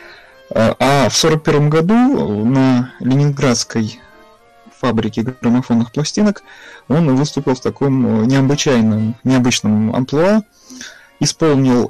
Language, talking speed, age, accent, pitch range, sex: Russian, 85 wpm, 30-49, native, 120-160 Hz, male